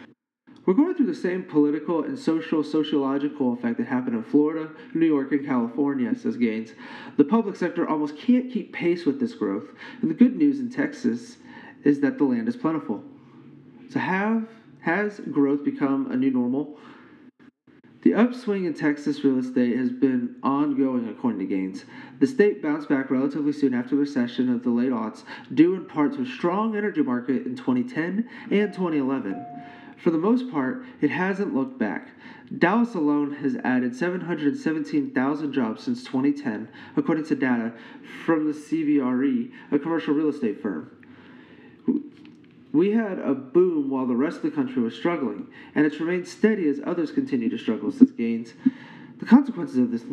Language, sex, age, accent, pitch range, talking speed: English, male, 30-49, American, 160-270 Hz, 170 wpm